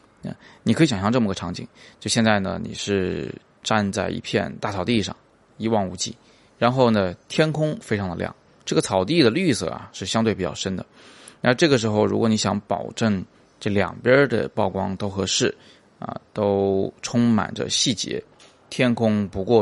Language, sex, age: Chinese, male, 20-39